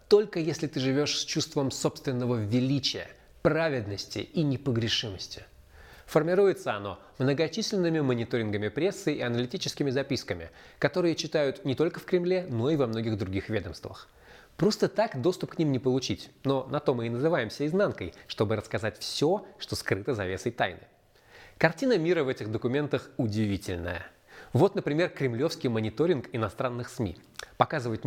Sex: male